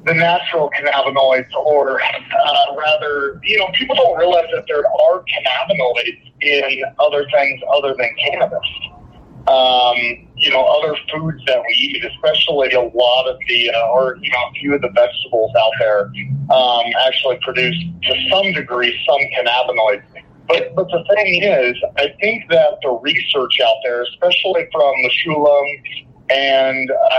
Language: English